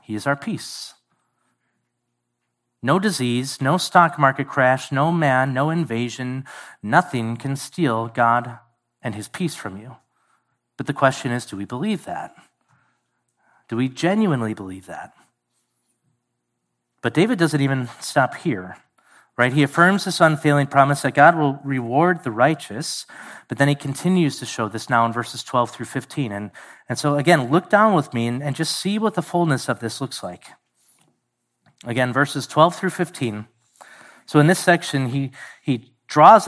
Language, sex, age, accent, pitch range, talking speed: English, male, 30-49, American, 120-160 Hz, 160 wpm